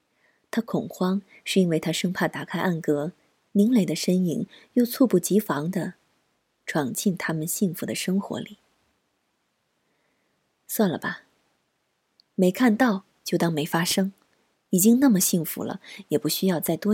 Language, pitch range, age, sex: Chinese, 170-210 Hz, 30-49, female